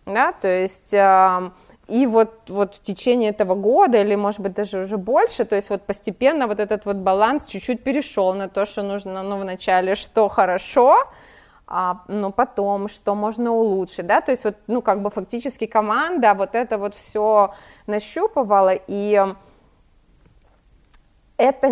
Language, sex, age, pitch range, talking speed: Ukrainian, female, 20-39, 195-225 Hz, 155 wpm